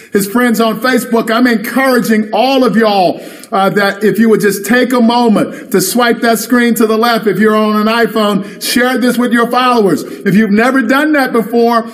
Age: 50-69